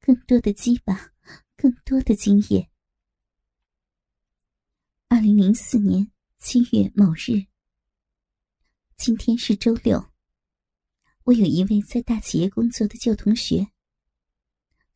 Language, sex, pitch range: Chinese, male, 205-240 Hz